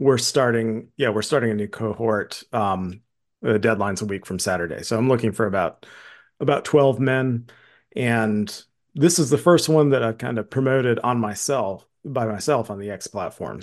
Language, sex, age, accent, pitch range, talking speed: English, male, 40-59, American, 105-145 Hz, 185 wpm